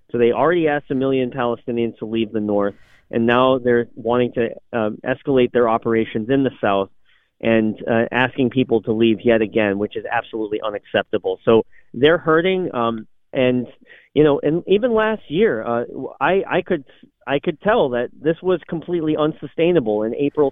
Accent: American